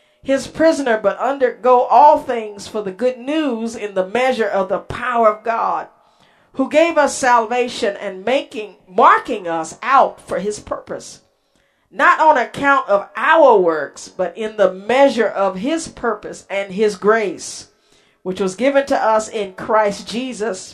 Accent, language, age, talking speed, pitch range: American, English, 50-69, 155 wpm, 210-275 Hz